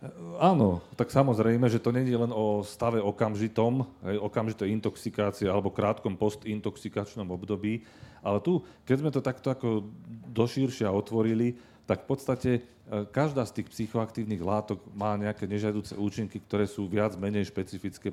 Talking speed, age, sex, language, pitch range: 145 wpm, 40-59, male, Slovak, 100-115 Hz